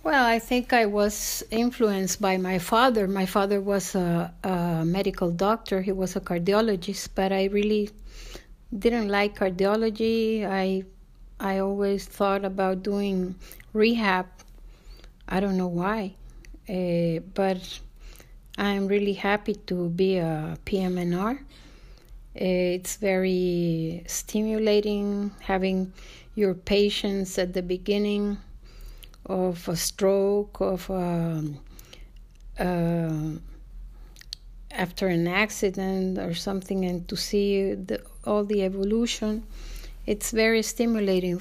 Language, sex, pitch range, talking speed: English, female, 185-205 Hz, 110 wpm